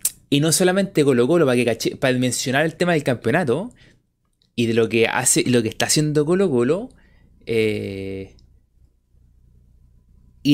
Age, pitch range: 20-39, 115-155 Hz